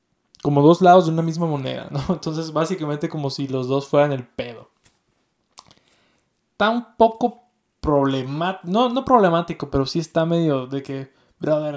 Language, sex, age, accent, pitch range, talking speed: Spanish, male, 20-39, Mexican, 135-165 Hz, 160 wpm